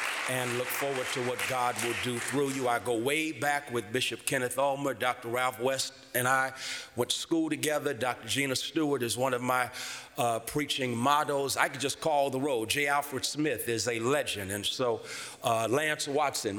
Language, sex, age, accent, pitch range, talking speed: English, male, 40-59, American, 125-150 Hz, 195 wpm